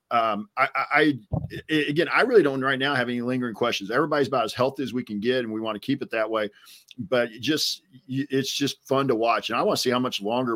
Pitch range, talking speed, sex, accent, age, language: 105-135 Hz, 260 wpm, male, American, 50-69, English